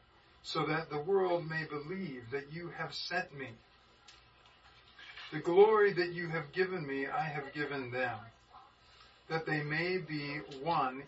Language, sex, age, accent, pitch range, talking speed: English, male, 40-59, American, 135-170 Hz, 145 wpm